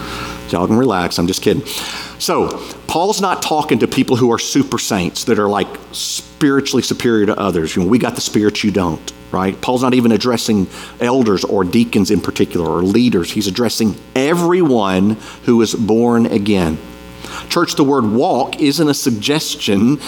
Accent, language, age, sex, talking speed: American, English, 50-69, male, 170 wpm